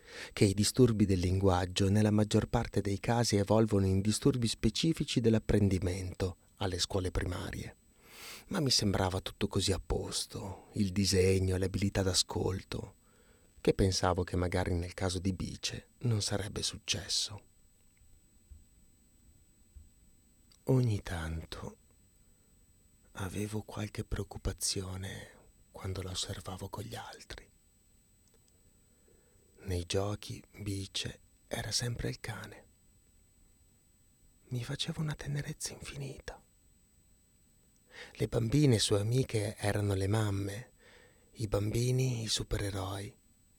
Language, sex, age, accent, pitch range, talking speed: Italian, male, 30-49, native, 95-110 Hz, 100 wpm